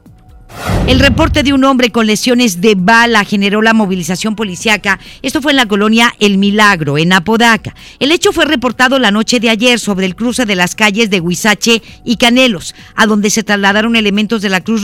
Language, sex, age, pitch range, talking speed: Spanish, female, 50-69, 190-225 Hz, 195 wpm